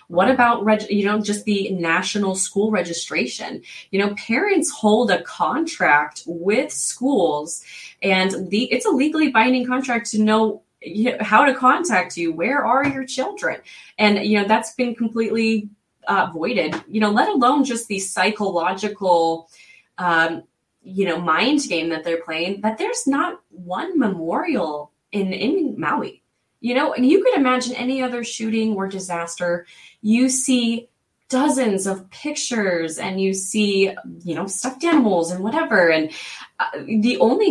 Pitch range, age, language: 175-240 Hz, 20-39, English